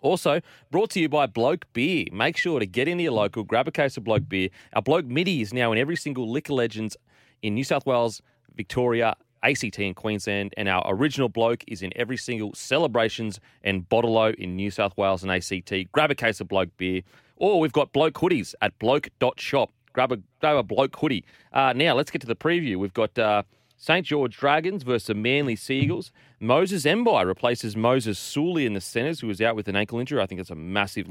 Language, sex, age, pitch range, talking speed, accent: English, male, 30-49, 105-135 Hz, 215 wpm, Australian